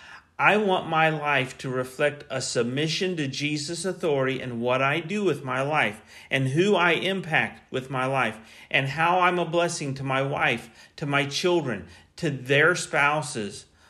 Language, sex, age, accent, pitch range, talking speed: English, male, 40-59, American, 130-170 Hz, 170 wpm